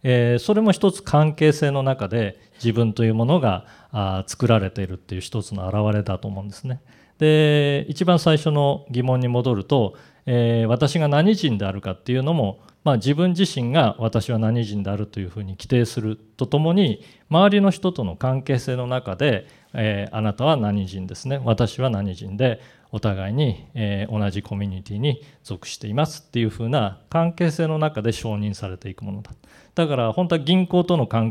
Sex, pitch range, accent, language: male, 105-150 Hz, native, Japanese